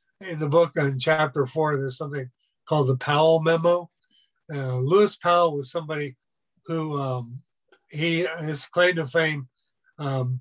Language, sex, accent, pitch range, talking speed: English, male, American, 135-165 Hz, 145 wpm